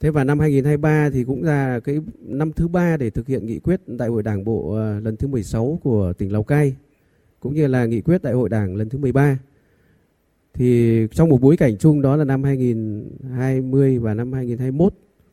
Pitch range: 115-145 Hz